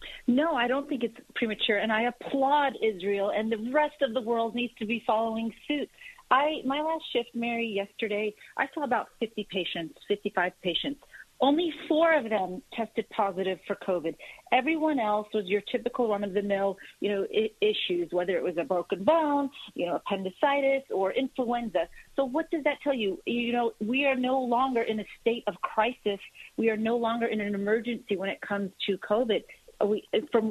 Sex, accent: female, American